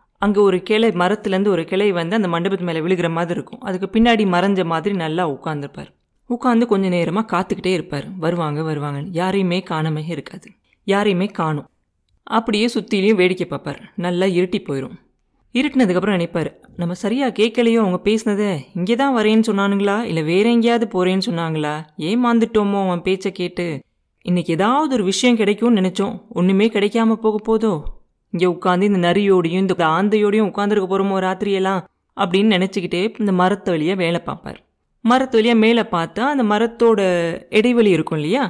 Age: 30-49